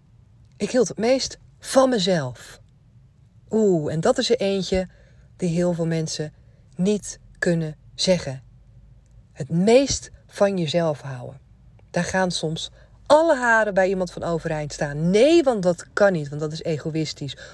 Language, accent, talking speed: Dutch, Dutch, 145 wpm